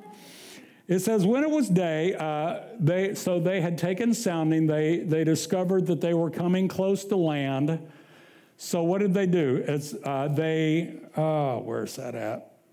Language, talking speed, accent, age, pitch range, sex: English, 165 wpm, American, 60-79, 155-200 Hz, male